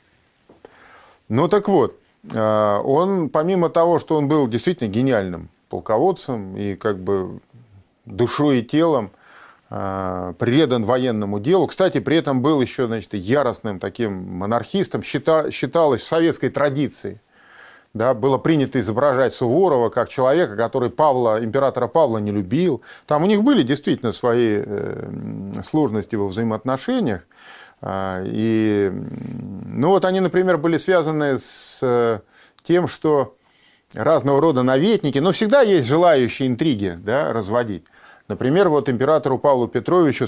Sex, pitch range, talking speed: male, 110-155 Hz, 115 wpm